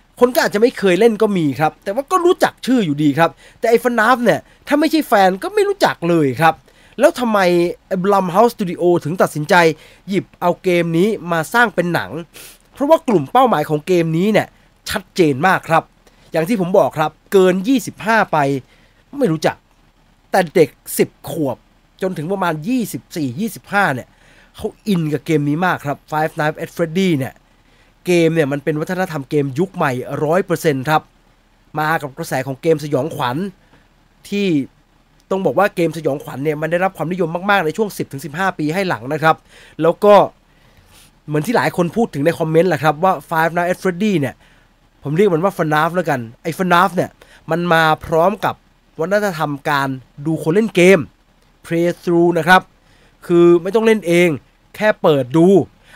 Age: 20-39